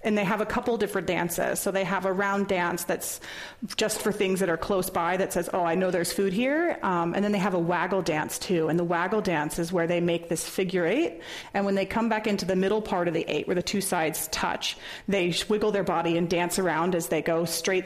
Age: 30-49